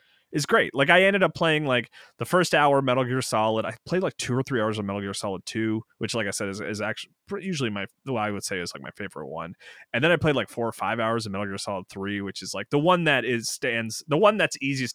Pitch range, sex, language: 105-130 Hz, male, English